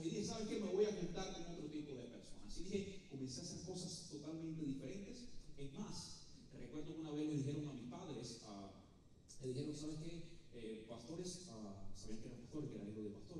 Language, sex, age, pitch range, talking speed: Spanish, male, 30-49, 150-205 Hz, 210 wpm